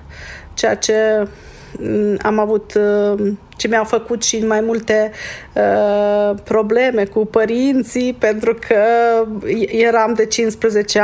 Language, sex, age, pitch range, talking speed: Romanian, female, 40-59, 200-235 Hz, 85 wpm